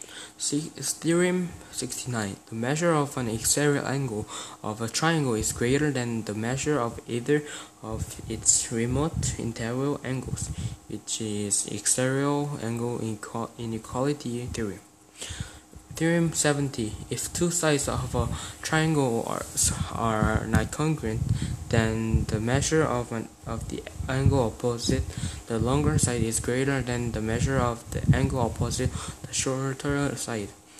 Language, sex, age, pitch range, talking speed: English, male, 20-39, 110-140 Hz, 125 wpm